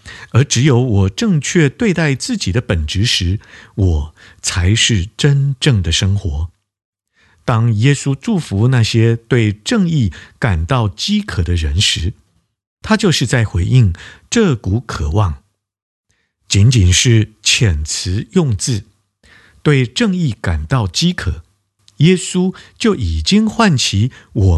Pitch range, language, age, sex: 95-140 Hz, Chinese, 50-69, male